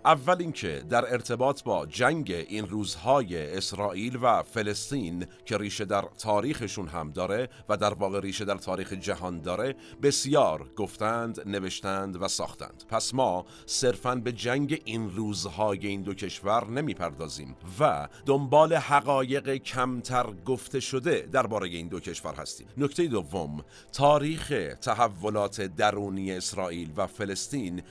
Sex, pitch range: male, 95-125 Hz